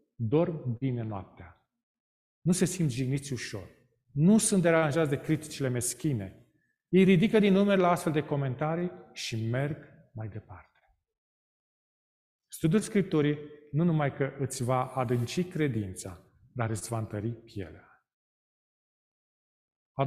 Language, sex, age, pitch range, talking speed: Romanian, male, 40-59, 120-190 Hz, 125 wpm